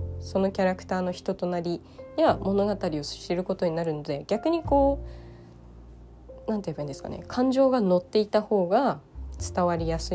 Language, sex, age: Japanese, female, 20-39